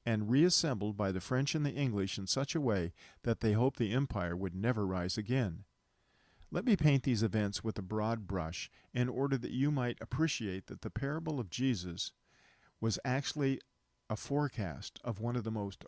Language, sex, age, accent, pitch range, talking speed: English, male, 50-69, American, 100-135 Hz, 190 wpm